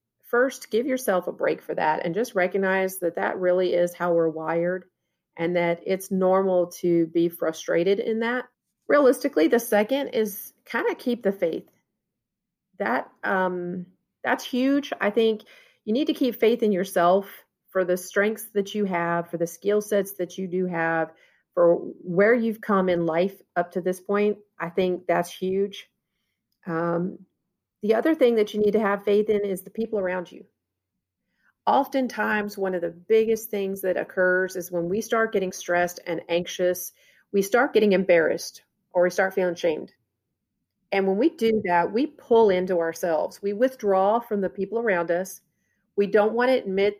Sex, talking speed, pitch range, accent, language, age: female, 175 wpm, 180-215 Hz, American, English, 40-59